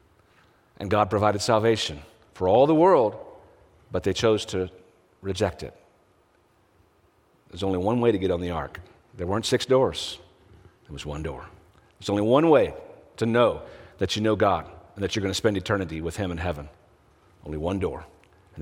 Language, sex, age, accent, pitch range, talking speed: English, male, 50-69, American, 85-115 Hz, 180 wpm